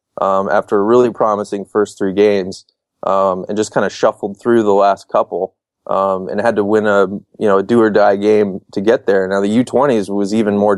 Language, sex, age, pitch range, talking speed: English, male, 20-39, 100-110 Hz, 225 wpm